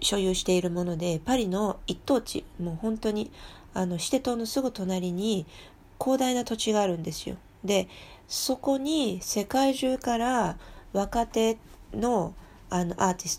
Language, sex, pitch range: Japanese, female, 165-220 Hz